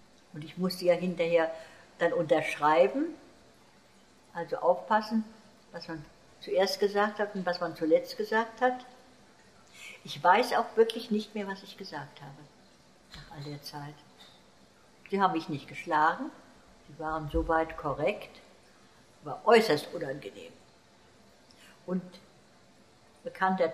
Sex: female